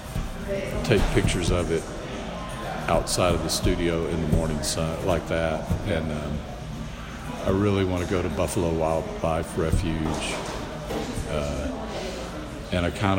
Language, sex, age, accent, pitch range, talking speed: English, male, 50-69, American, 85-105 Hz, 130 wpm